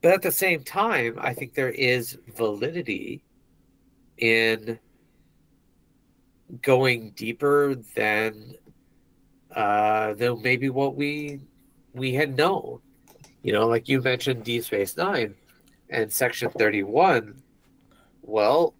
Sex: male